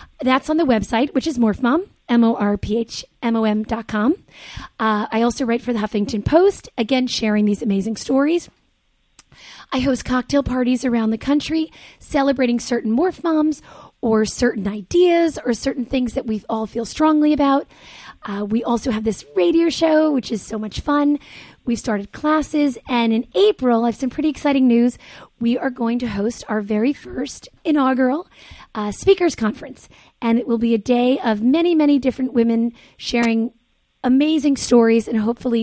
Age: 30-49